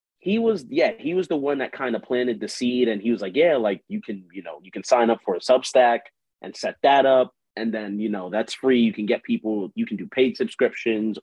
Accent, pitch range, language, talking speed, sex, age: American, 110-140 Hz, English, 260 wpm, male, 30-49